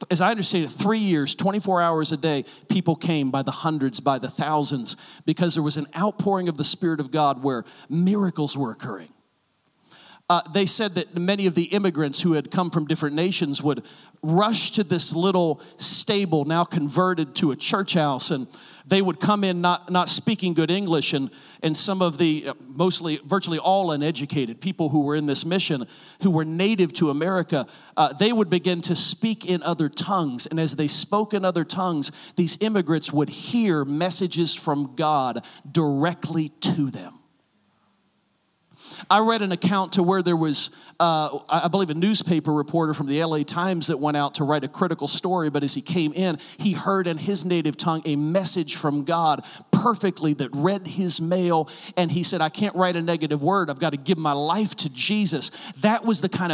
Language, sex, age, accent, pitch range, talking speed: English, male, 40-59, American, 150-185 Hz, 190 wpm